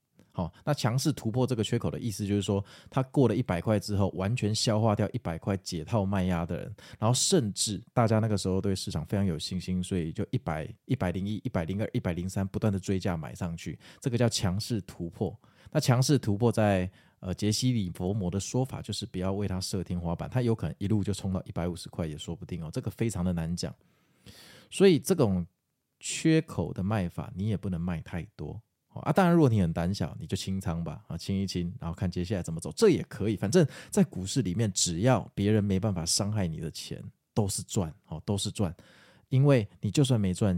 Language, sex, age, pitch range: Chinese, male, 20-39, 90-120 Hz